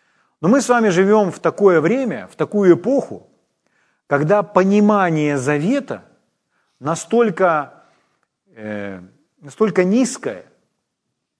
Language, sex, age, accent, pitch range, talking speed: Ukrainian, male, 40-59, native, 145-210 Hz, 95 wpm